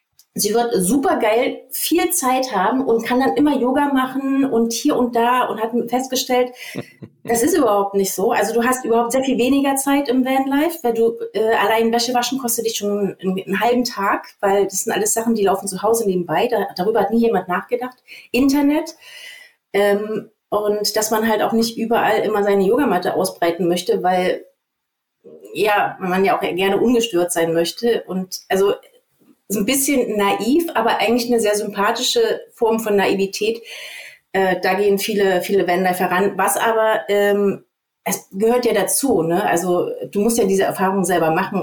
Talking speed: 180 wpm